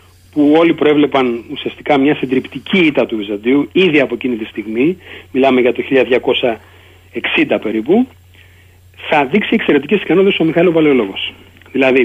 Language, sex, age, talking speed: Greek, male, 40-59, 135 wpm